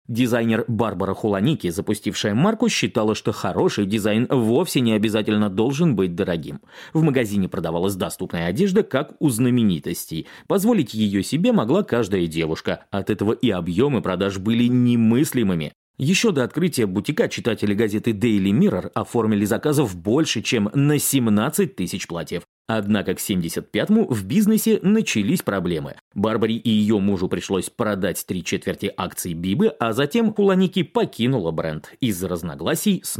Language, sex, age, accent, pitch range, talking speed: Russian, male, 30-49, native, 95-155 Hz, 140 wpm